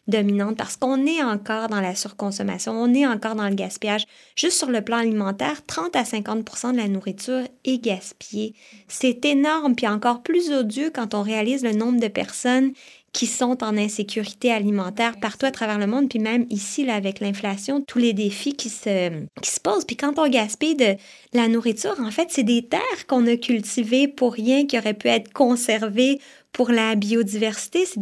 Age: 20-39